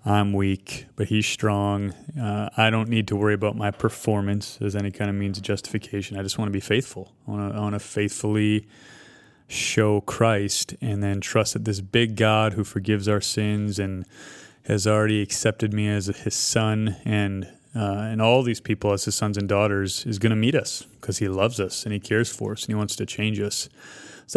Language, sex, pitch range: English, male, 100-115 Hz